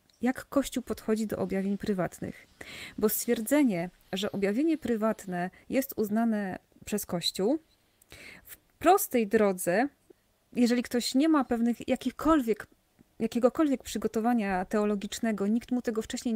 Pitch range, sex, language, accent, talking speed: 210-255 Hz, female, Polish, native, 110 wpm